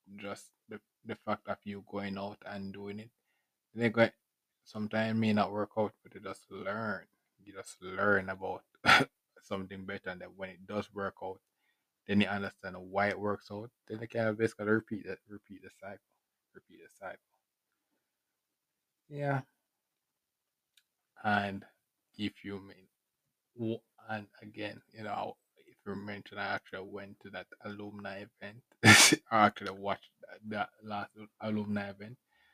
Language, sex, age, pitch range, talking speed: English, male, 20-39, 100-110 Hz, 150 wpm